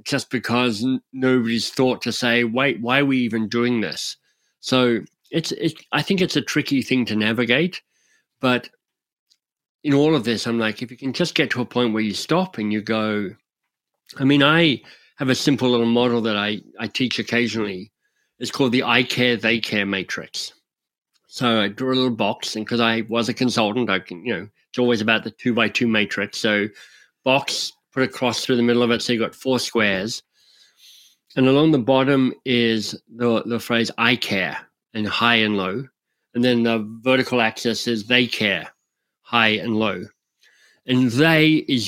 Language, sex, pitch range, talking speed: English, male, 115-130 Hz, 190 wpm